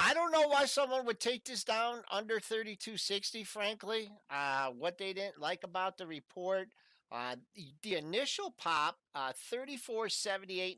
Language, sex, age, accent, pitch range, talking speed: English, male, 50-69, American, 150-215 Hz, 145 wpm